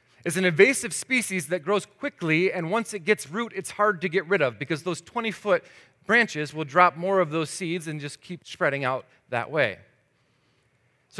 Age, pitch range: 30-49, 135-185 Hz